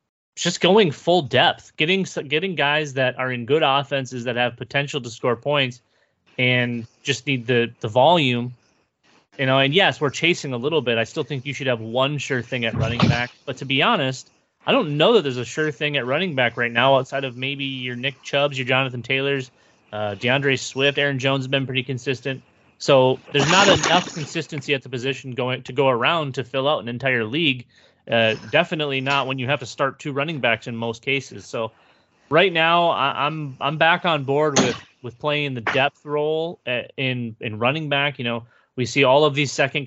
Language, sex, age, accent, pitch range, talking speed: English, male, 30-49, American, 120-145 Hz, 210 wpm